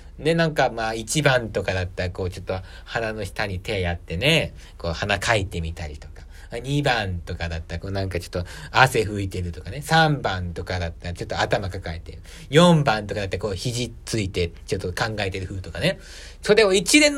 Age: 40-59